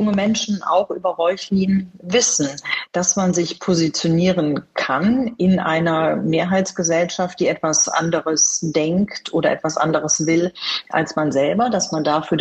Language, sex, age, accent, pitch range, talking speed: German, female, 40-59, German, 155-195 Hz, 135 wpm